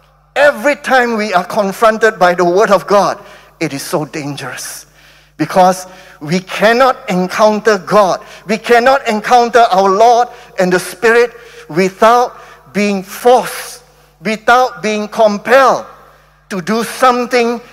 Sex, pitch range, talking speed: male, 185-260 Hz, 120 wpm